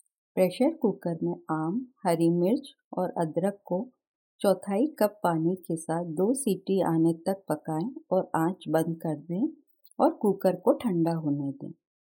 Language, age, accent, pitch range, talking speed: Hindi, 40-59, native, 165-220 Hz, 150 wpm